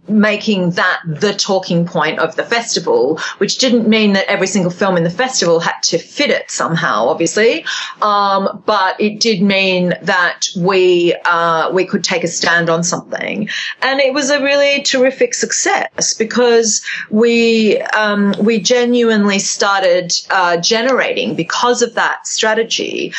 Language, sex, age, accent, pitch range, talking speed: English, female, 30-49, Australian, 175-215 Hz, 150 wpm